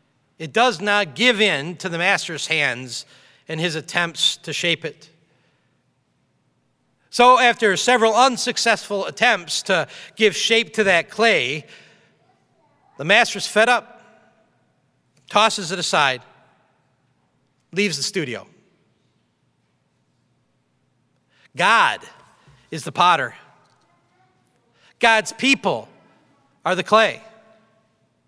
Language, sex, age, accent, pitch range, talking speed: English, male, 40-59, American, 160-235 Hz, 95 wpm